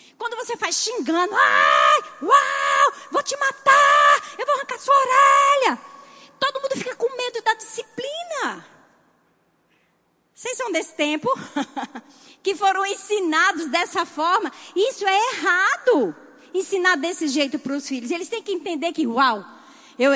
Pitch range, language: 275-360 Hz, Portuguese